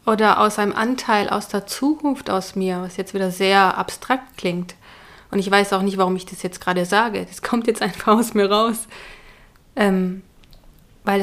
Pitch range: 195-220 Hz